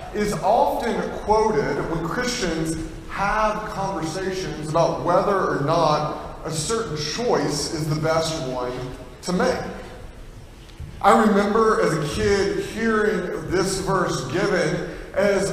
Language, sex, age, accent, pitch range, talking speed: English, male, 40-59, American, 160-210 Hz, 115 wpm